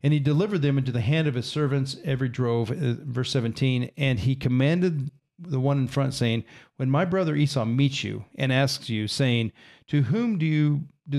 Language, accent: English, American